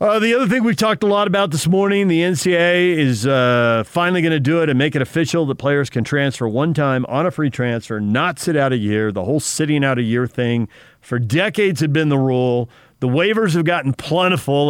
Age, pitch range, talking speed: 50-69, 110-150 Hz, 235 wpm